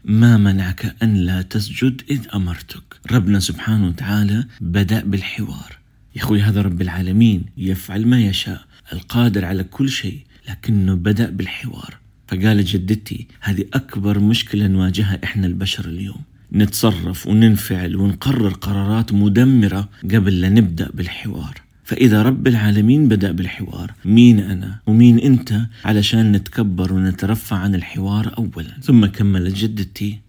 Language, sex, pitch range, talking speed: Arabic, male, 95-115 Hz, 125 wpm